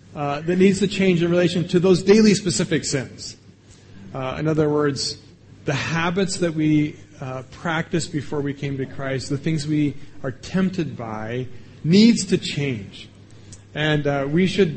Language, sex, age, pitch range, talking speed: English, male, 30-49, 125-170 Hz, 165 wpm